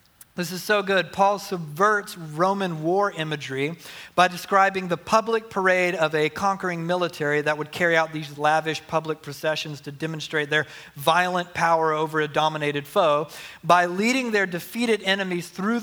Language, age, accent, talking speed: English, 40-59, American, 155 wpm